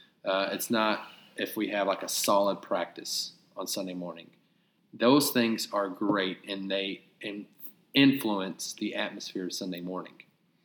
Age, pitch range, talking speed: 30-49, 100-115 Hz, 140 wpm